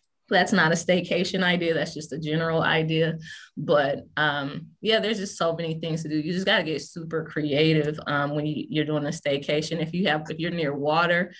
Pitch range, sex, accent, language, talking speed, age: 145-170 Hz, female, American, English, 215 wpm, 20-39